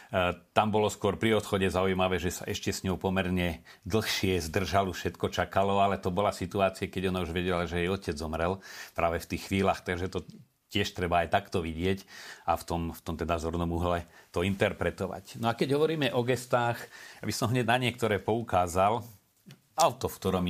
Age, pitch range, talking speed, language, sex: 40-59, 90-105 Hz, 185 wpm, Slovak, male